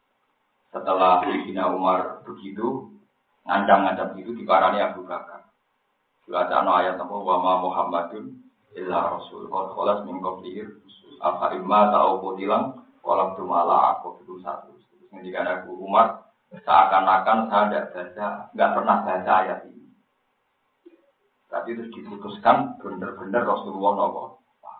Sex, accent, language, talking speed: male, native, Indonesian, 110 wpm